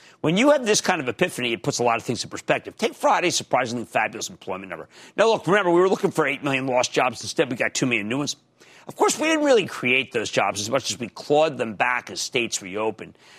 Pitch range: 130-215 Hz